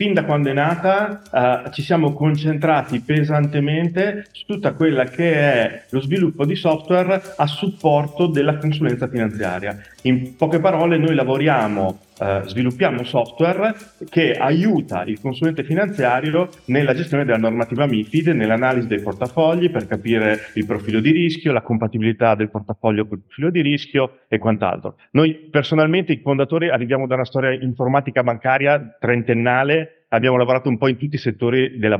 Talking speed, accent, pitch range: 155 wpm, native, 120-160 Hz